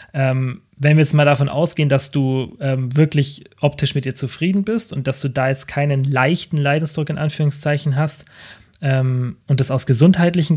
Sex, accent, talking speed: male, German, 180 wpm